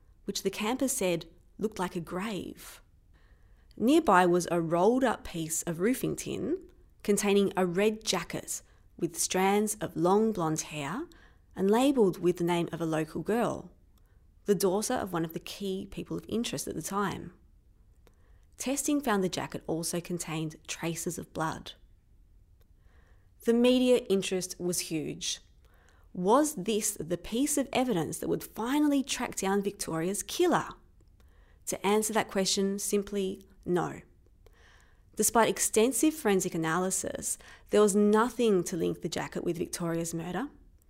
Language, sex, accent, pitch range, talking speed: English, female, Australian, 165-215 Hz, 140 wpm